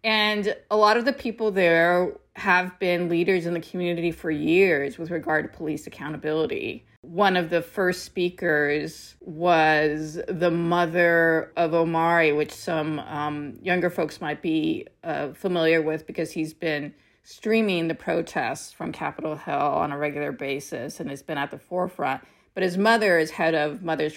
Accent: American